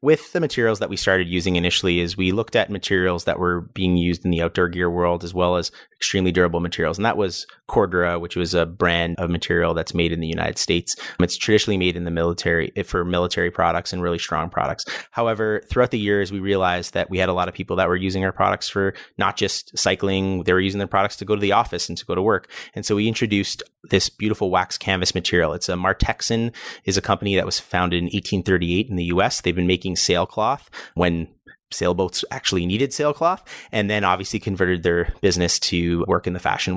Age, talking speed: 30-49, 225 wpm